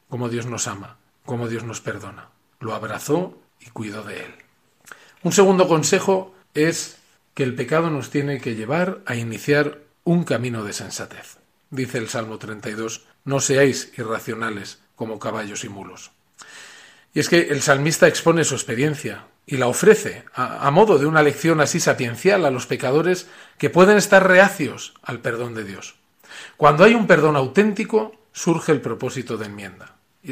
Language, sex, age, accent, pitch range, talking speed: Spanish, male, 40-59, Spanish, 115-160 Hz, 165 wpm